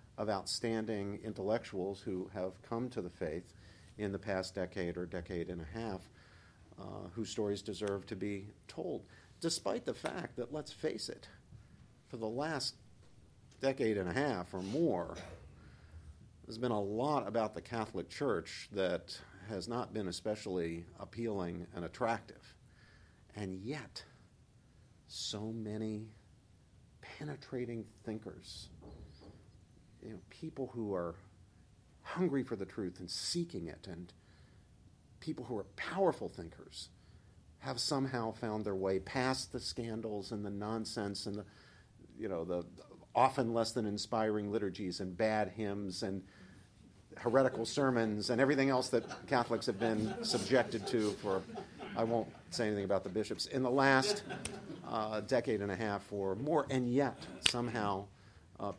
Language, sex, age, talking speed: English, male, 50-69, 140 wpm